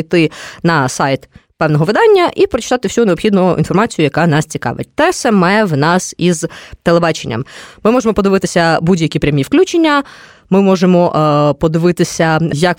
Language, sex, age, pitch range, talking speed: Ukrainian, female, 20-39, 160-210 Hz, 140 wpm